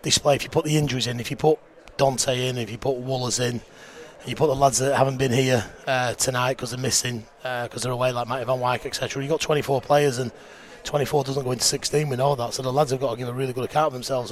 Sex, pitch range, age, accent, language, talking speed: male, 125-145 Hz, 30-49, British, English, 275 wpm